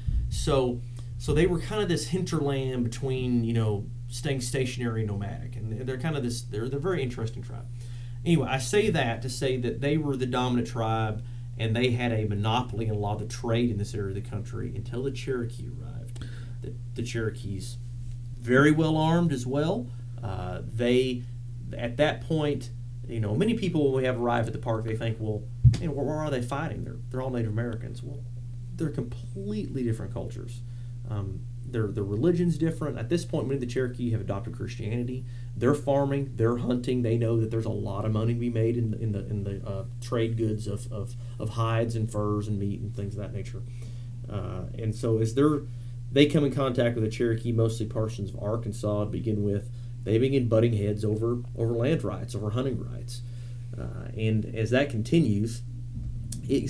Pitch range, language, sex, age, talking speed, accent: 115-130 Hz, English, male, 30-49, 200 wpm, American